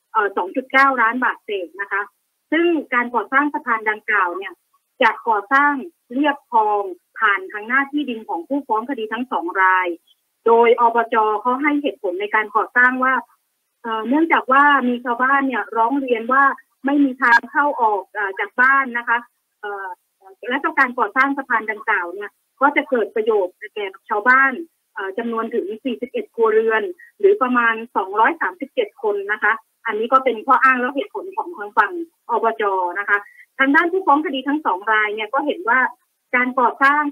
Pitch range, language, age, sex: 225-295 Hz, Thai, 30-49, female